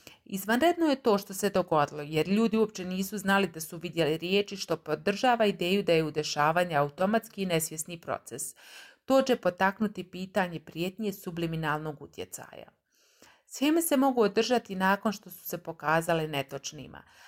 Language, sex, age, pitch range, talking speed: English, female, 30-49, 160-200 Hz, 145 wpm